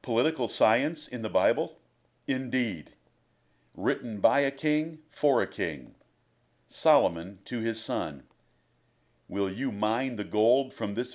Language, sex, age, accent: English, male, 50-69, American